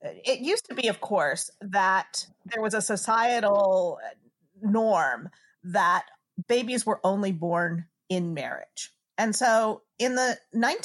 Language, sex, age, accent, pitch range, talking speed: English, female, 40-59, American, 185-235 Hz, 125 wpm